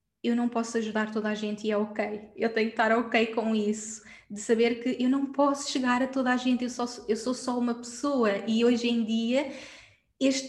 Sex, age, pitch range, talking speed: female, 20-39, 225-245 Hz, 225 wpm